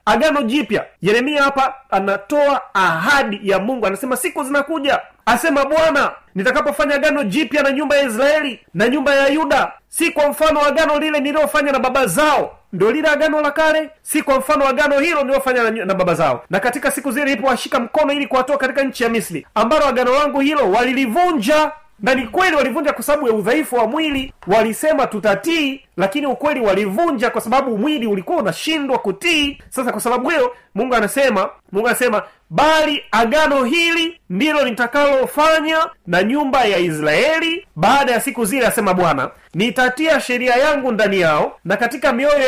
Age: 30-49